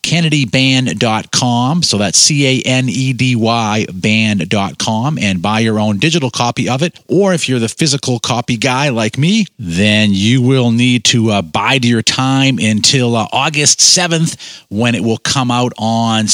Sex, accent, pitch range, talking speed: male, American, 110-150 Hz, 150 wpm